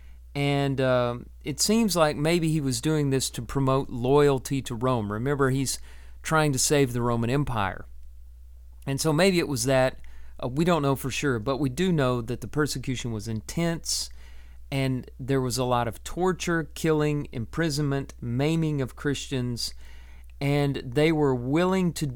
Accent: American